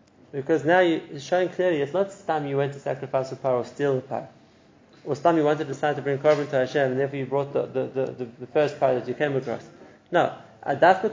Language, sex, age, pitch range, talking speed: English, male, 30-49, 135-170 Hz, 265 wpm